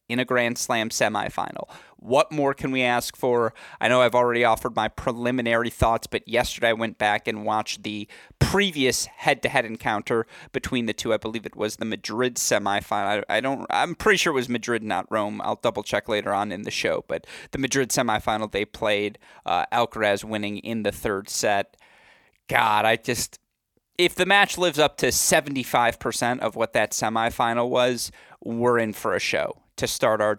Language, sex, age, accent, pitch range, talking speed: English, male, 30-49, American, 115-140 Hz, 190 wpm